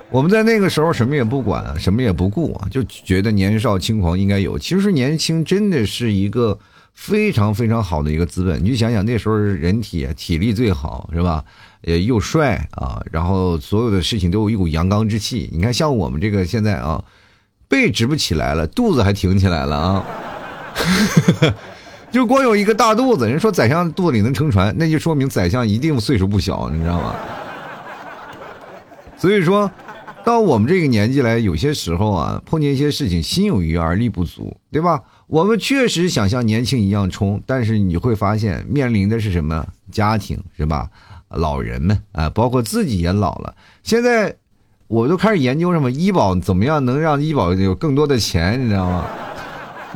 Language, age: Chinese, 50-69